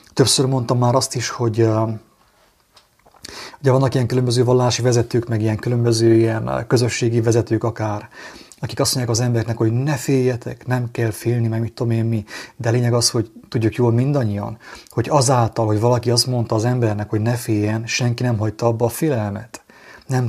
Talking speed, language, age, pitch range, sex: 175 wpm, English, 30-49, 115-125 Hz, male